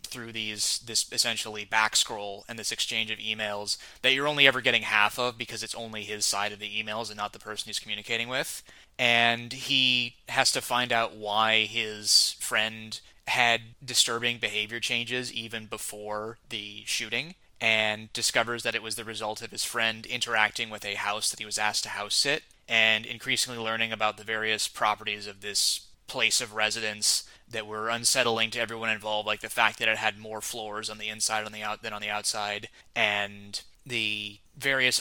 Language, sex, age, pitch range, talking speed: English, male, 20-39, 105-120 Hz, 180 wpm